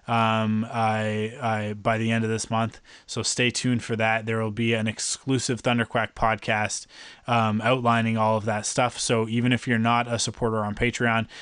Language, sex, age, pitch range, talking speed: English, male, 20-39, 110-130 Hz, 190 wpm